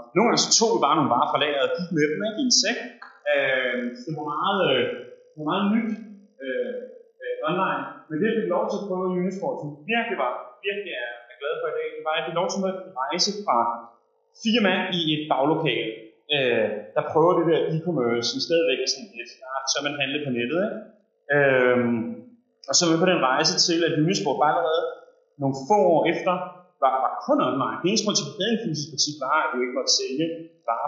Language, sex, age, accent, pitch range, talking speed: Danish, male, 30-49, native, 135-220 Hz, 200 wpm